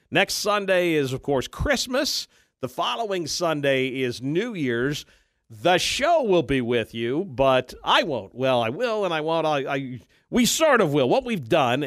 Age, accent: 50-69, American